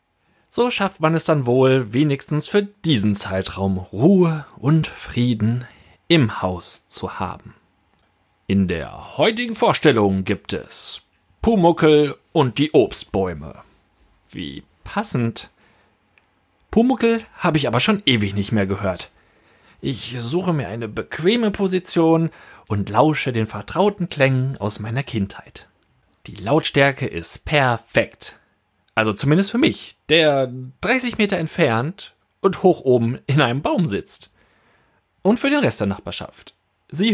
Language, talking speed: German, 125 wpm